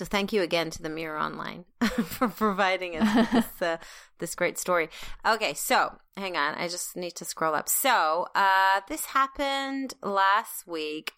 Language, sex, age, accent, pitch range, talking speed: English, female, 30-49, American, 160-200 Hz, 165 wpm